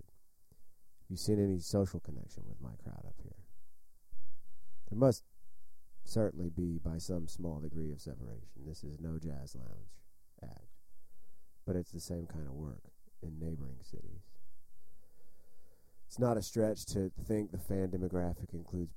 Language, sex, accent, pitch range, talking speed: English, male, American, 75-95 Hz, 150 wpm